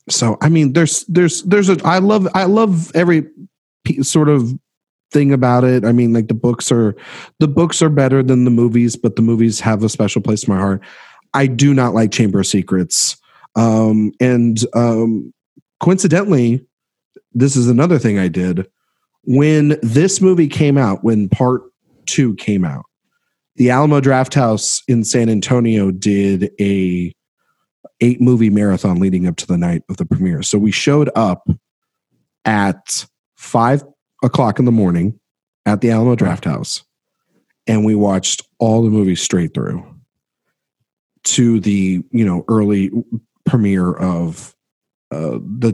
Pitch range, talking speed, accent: 105-140 Hz, 155 wpm, American